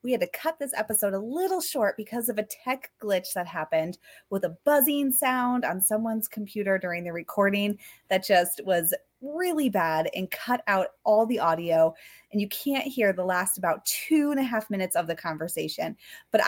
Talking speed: 195 wpm